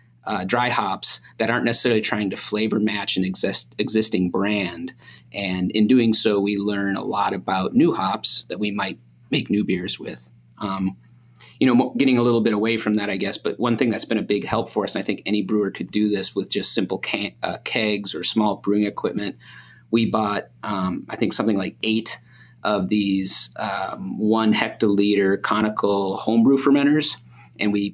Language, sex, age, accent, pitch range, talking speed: English, male, 30-49, American, 100-110 Hz, 195 wpm